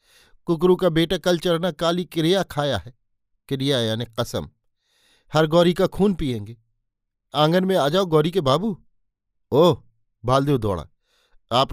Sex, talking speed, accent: male, 145 wpm, native